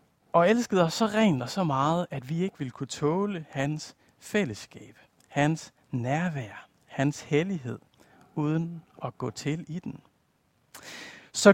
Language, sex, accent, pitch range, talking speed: Danish, male, native, 135-205 Hz, 140 wpm